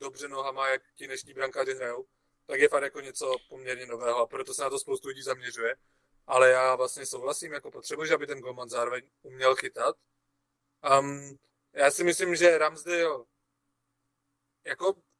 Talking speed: 165 wpm